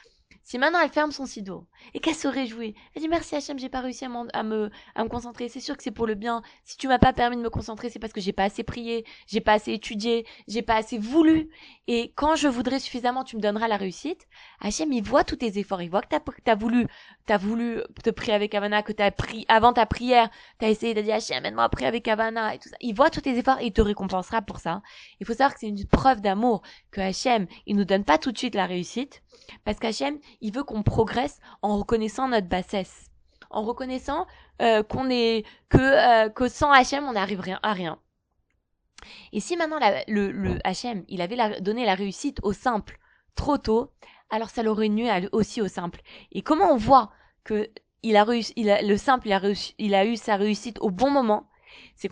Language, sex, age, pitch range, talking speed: French, female, 20-39, 205-250 Hz, 235 wpm